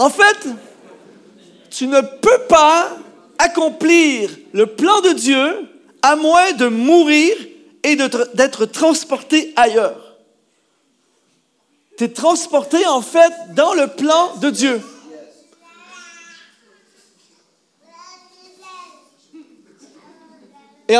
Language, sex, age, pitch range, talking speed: French, male, 40-59, 230-330 Hz, 85 wpm